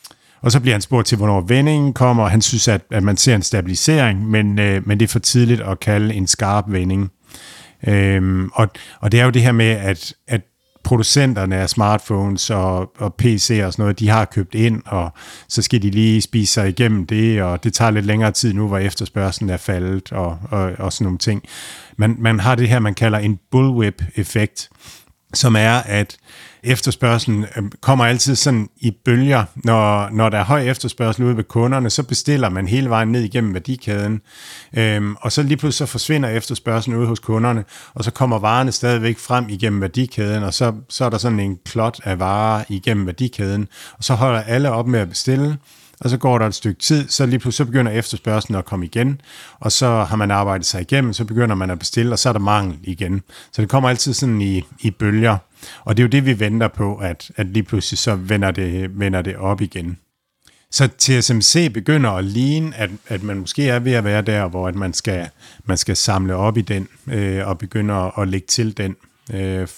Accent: native